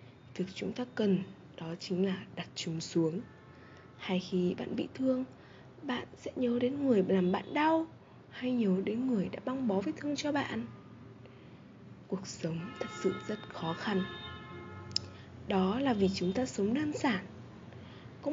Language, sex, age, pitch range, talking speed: Vietnamese, female, 20-39, 175-235 Hz, 160 wpm